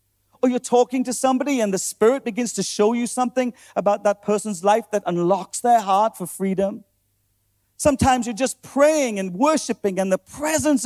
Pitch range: 165-245 Hz